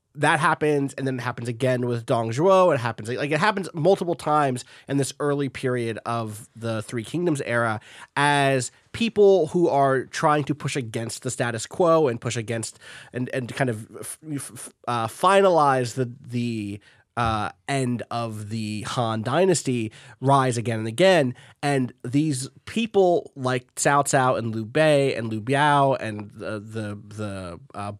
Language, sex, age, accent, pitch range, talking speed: English, male, 30-49, American, 120-150 Hz, 165 wpm